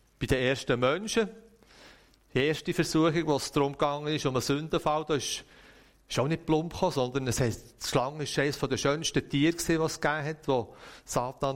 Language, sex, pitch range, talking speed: German, male, 120-145 Hz, 175 wpm